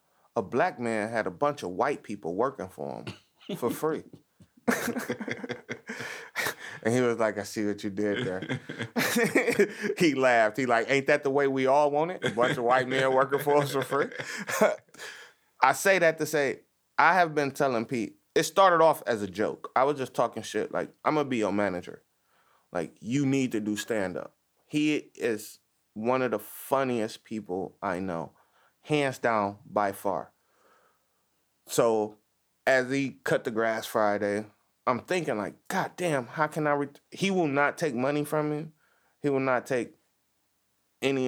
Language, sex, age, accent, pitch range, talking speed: English, male, 30-49, American, 110-145 Hz, 175 wpm